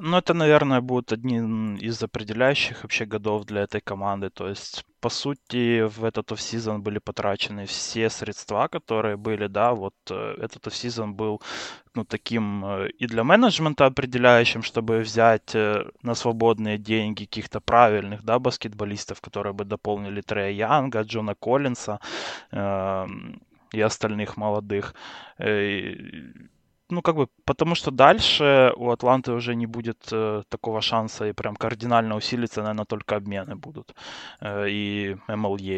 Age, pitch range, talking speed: 20-39, 105-130 Hz, 135 wpm